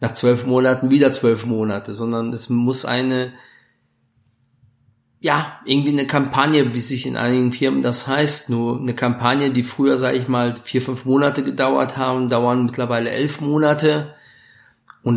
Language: German